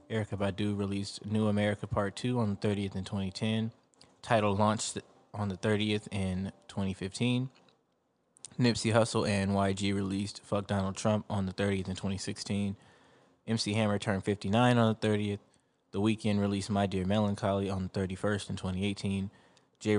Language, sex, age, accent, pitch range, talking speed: English, male, 20-39, American, 95-110 Hz, 150 wpm